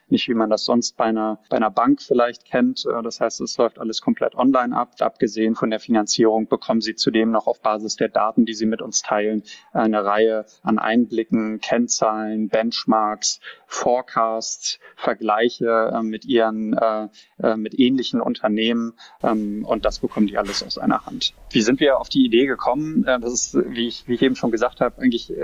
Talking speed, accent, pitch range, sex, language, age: 180 wpm, German, 110-120 Hz, male, German, 20-39